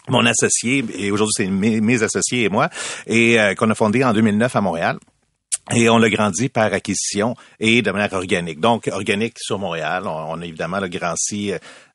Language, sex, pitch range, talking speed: French, male, 100-125 Hz, 200 wpm